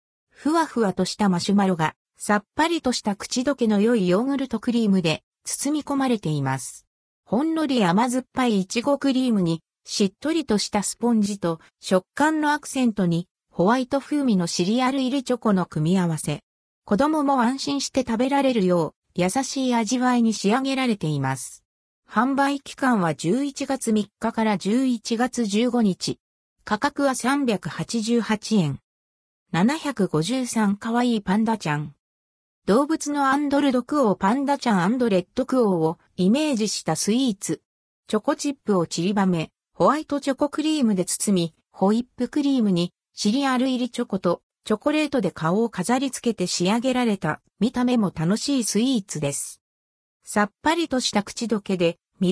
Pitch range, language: 180-260 Hz, Japanese